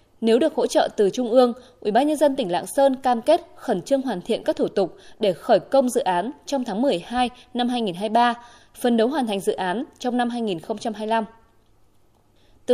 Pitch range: 210-270 Hz